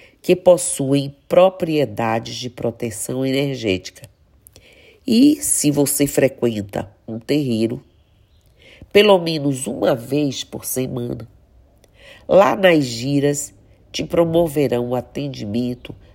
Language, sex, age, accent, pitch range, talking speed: Portuguese, female, 50-69, Brazilian, 120-165 Hz, 95 wpm